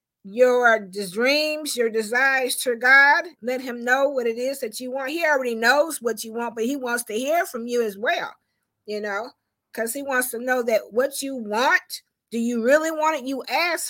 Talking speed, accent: 205 wpm, American